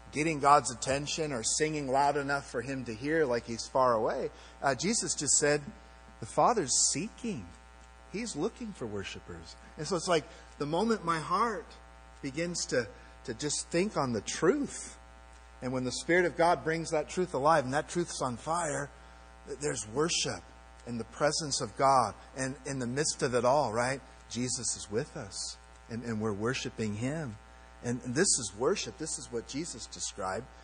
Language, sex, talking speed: English, male, 175 wpm